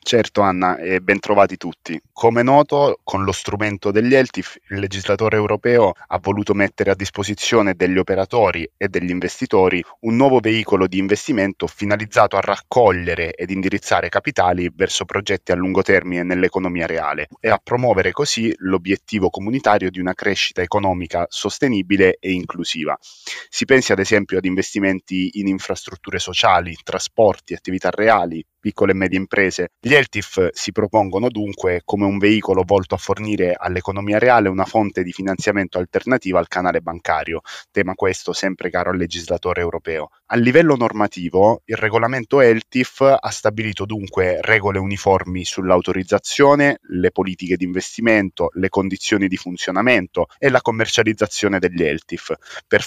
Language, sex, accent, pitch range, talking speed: Italian, male, native, 90-105 Hz, 145 wpm